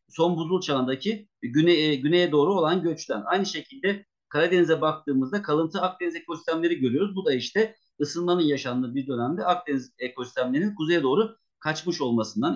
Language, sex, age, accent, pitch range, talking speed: Turkish, male, 50-69, native, 140-180 Hz, 140 wpm